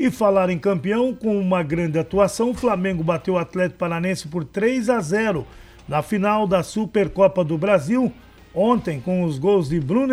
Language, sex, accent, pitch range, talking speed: Portuguese, male, Brazilian, 175-210 Hz, 180 wpm